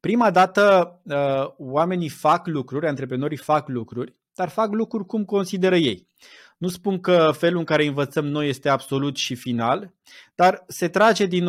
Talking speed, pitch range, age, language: 155 wpm, 135-175 Hz, 20-39, Romanian